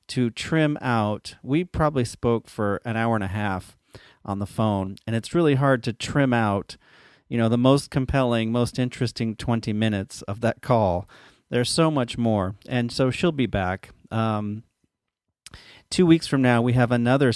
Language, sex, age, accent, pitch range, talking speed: English, male, 40-59, American, 105-130 Hz, 175 wpm